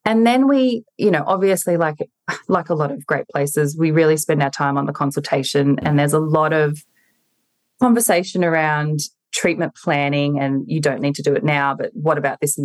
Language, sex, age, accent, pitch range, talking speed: English, female, 20-39, Australian, 145-175 Hz, 205 wpm